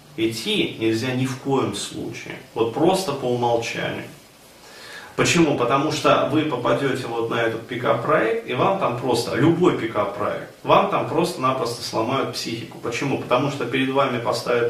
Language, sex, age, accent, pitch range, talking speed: Russian, male, 30-49, native, 115-150 Hz, 145 wpm